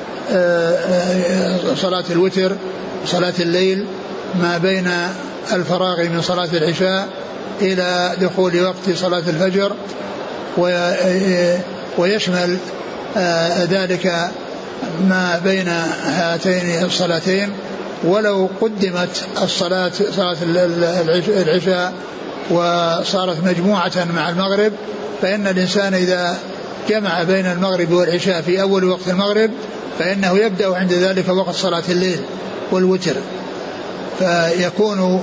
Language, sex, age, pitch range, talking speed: Arabic, male, 60-79, 180-195 Hz, 85 wpm